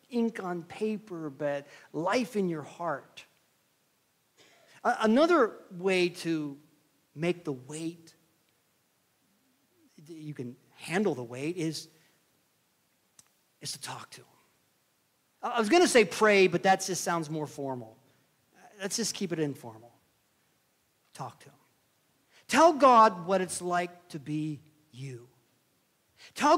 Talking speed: 120 wpm